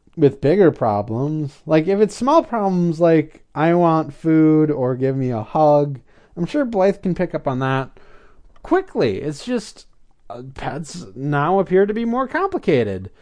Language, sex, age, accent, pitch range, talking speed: English, male, 20-39, American, 125-205 Hz, 165 wpm